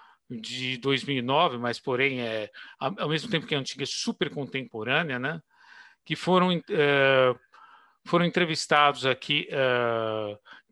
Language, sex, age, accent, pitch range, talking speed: Portuguese, male, 50-69, Brazilian, 135-190 Hz, 125 wpm